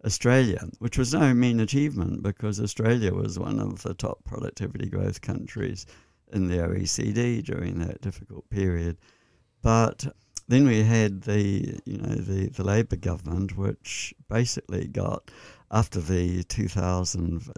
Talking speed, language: 135 wpm, English